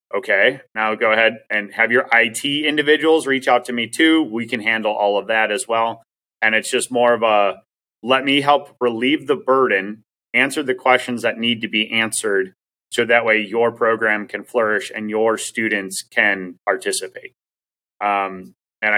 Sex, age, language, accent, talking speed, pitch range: male, 30-49, English, American, 175 wpm, 105-130 Hz